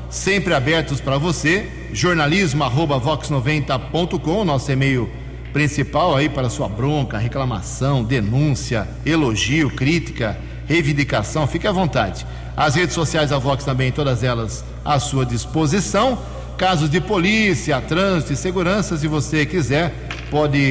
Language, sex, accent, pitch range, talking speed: Portuguese, male, Brazilian, 135-165 Hz, 120 wpm